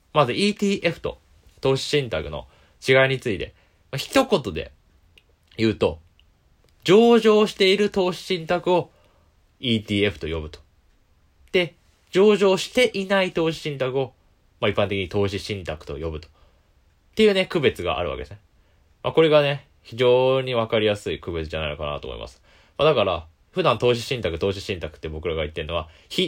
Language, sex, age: Japanese, male, 20-39